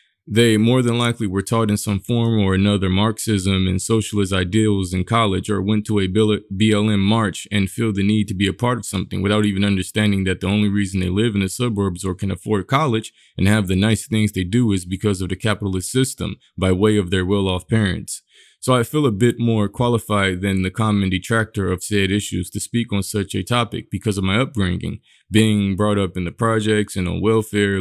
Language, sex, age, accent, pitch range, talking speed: English, male, 20-39, American, 95-115 Hz, 220 wpm